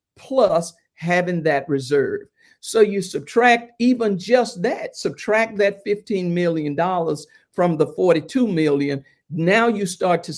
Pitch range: 155-200 Hz